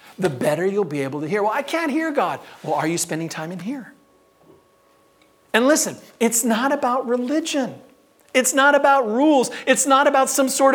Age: 40-59